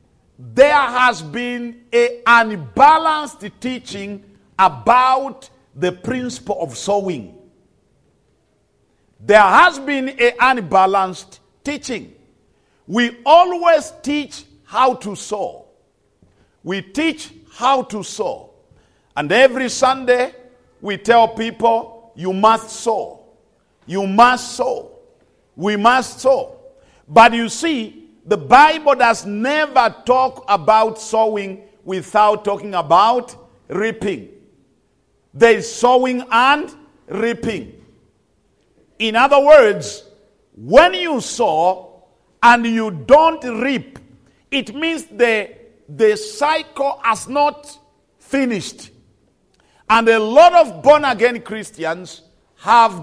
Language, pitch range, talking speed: English, 205-270 Hz, 100 wpm